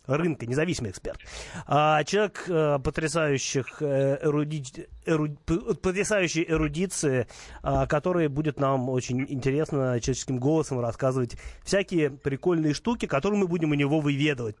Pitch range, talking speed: 130-170 Hz, 95 wpm